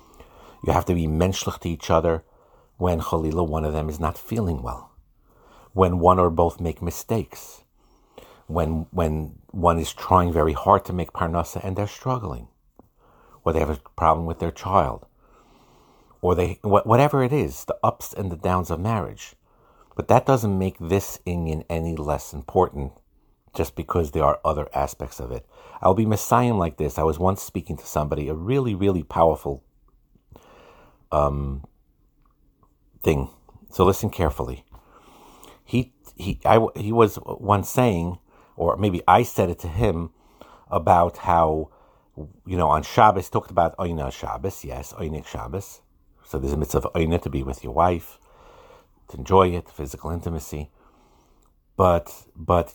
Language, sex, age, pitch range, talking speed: English, male, 60-79, 80-100 Hz, 160 wpm